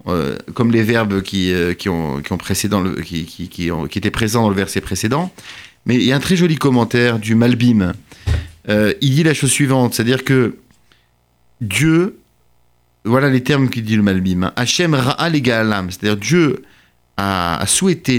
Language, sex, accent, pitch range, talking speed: French, male, French, 105-150 Hz, 140 wpm